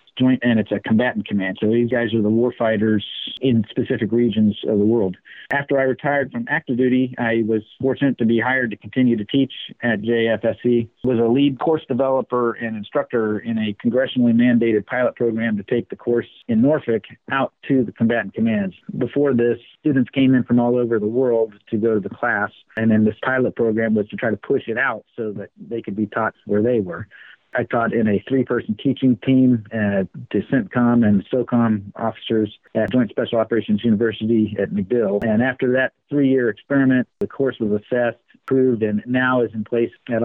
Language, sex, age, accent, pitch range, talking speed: English, male, 50-69, American, 110-130 Hz, 195 wpm